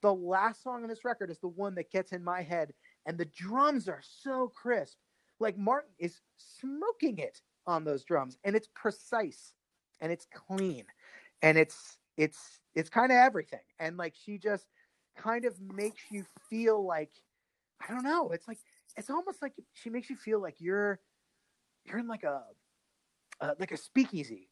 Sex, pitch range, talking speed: male, 160-220 Hz, 180 wpm